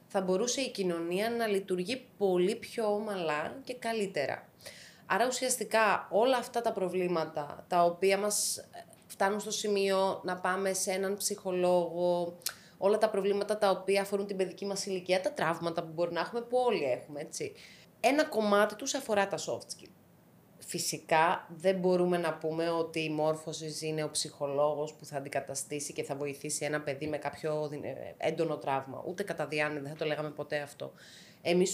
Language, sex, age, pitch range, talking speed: Greek, female, 20-39, 160-200 Hz, 165 wpm